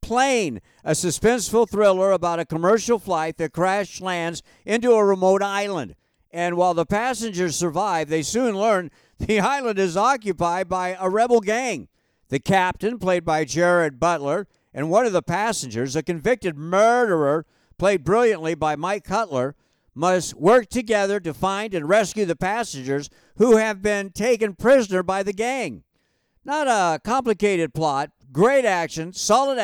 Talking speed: 150 wpm